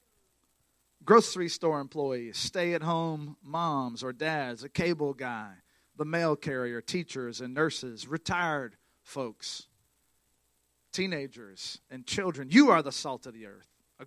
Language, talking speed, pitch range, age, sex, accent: English, 125 wpm, 125-180 Hz, 40-59, male, American